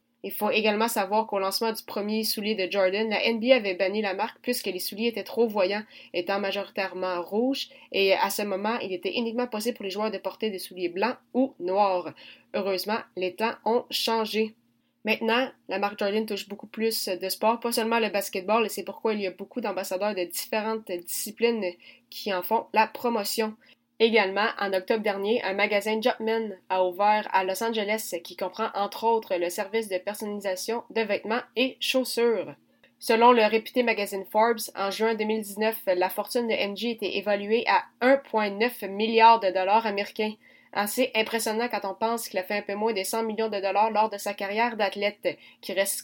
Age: 20-39